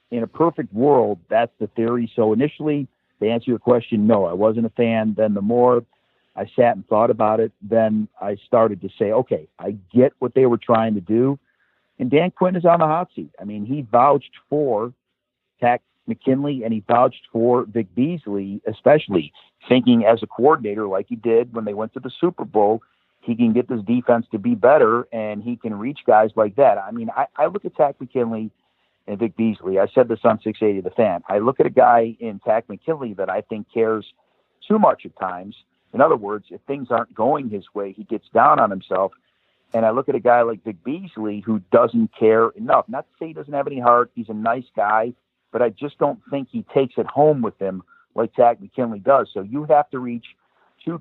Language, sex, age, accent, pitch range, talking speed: English, male, 50-69, American, 110-130 Hz, 220 wpm